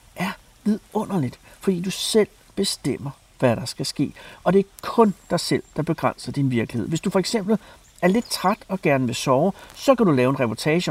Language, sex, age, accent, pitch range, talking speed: Danish, male, 60-79, native, 140-205 Hz, 205 wpm